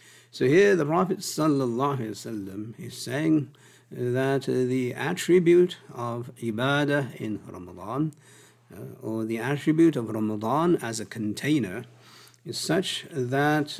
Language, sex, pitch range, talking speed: English, male, 110-145 Hz, 115 wpm